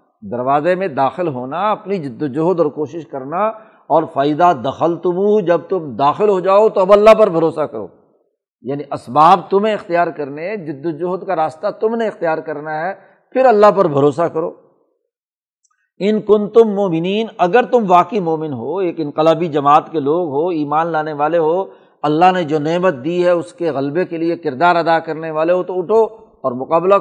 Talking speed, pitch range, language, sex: 185 wpm, 155-195 Hz, Urdu, male